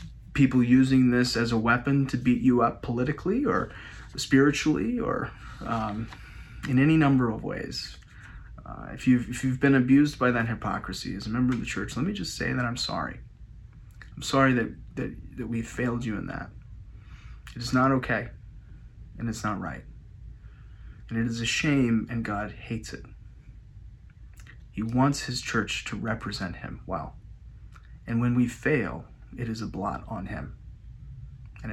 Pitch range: 110-125 Hz